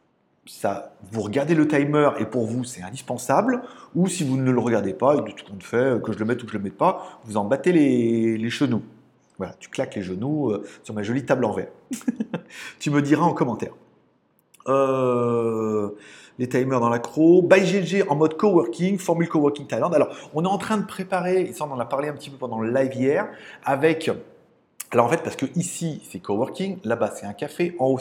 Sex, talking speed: male, 220 wpm